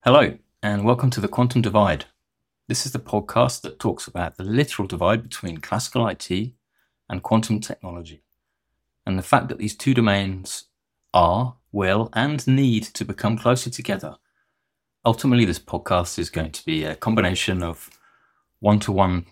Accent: British